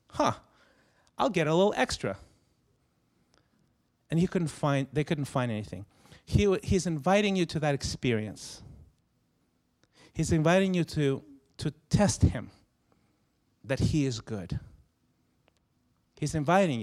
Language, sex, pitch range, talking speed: English, male, 120-155 Hz, 120 wpm